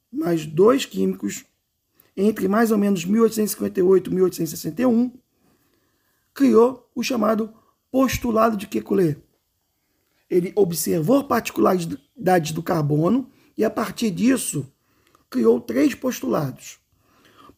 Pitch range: 160-235 Hz